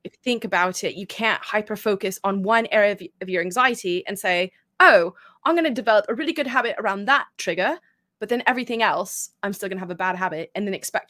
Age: 20-39